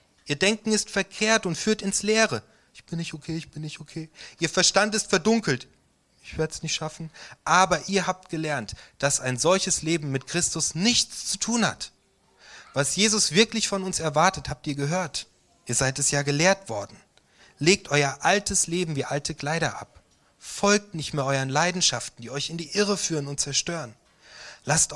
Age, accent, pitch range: 30-49, German, 135-185 Hz